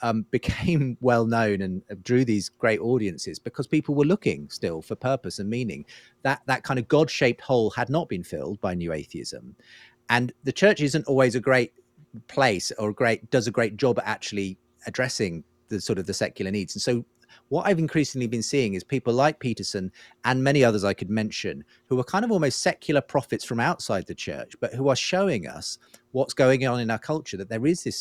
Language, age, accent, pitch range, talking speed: English, 40-59, British, 110-135 Hz, 210 wpm